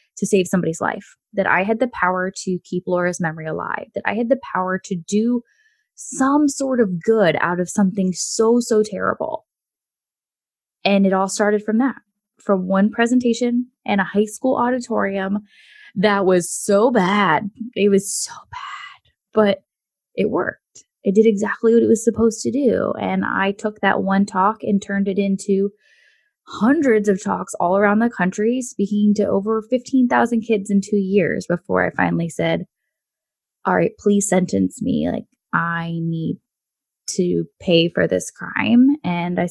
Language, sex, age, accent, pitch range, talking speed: English, female, 10-29, American, 190-230 Hz, 165 wpm